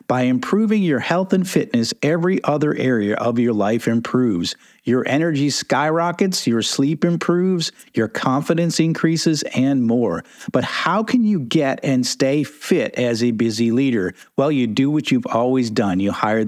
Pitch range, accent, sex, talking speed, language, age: 120-165 Hz, American, male, 165 wpm, English, 50-69